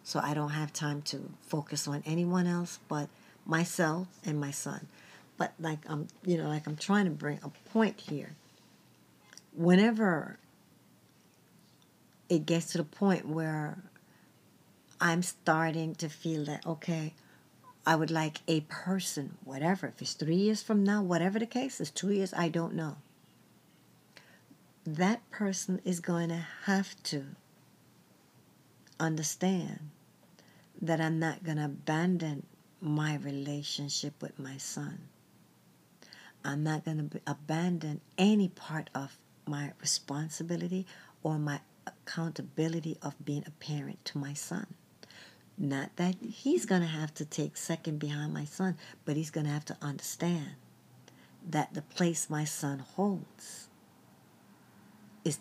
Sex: female